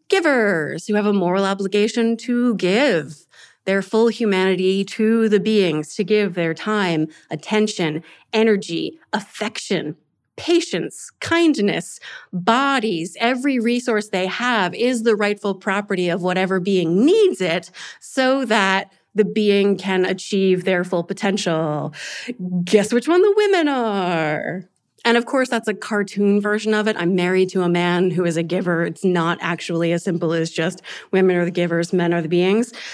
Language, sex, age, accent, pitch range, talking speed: English, female, 30-49, American, 180-220 Hz, 155 wpm